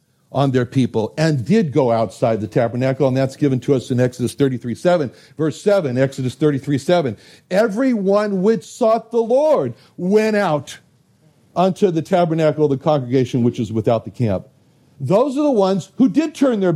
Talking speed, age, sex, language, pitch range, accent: 175 wpm, 60-79, male, English, 125-195 Hz, American